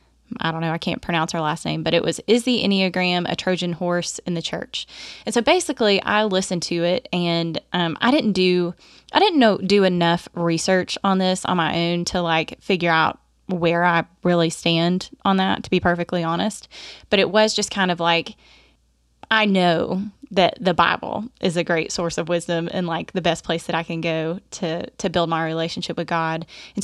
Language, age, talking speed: English, 20-39, 210 wpm